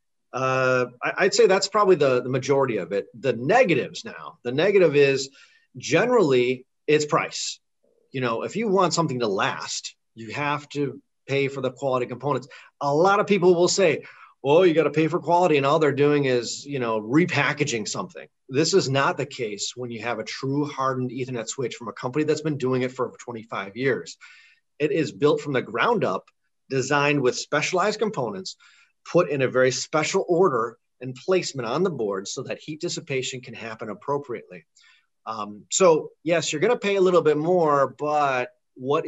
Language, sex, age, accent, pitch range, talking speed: English, male, 30-49, American, 125-165 Hz, 185 wpm